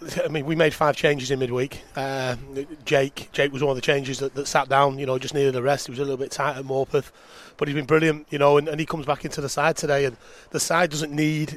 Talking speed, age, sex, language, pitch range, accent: 280 wpm, 30-49, male, English, 140-155 Hz, British